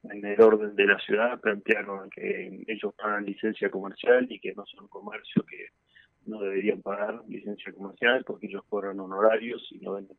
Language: Spanish